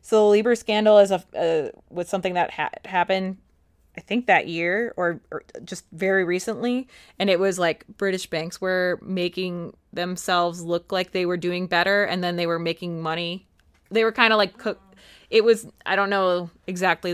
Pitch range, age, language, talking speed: 180-220 Hz, 20-39, English, 190 wpm